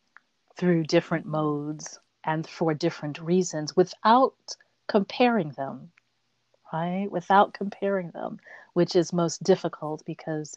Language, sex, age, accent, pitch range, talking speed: English, female, 40-59, American, 150-180 Hz, 110 wpm